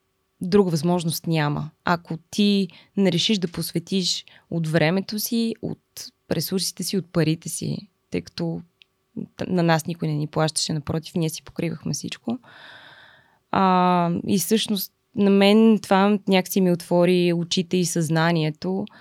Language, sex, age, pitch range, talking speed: Bulgarian, female, 20-39, 160-190 Hz, 135 wpm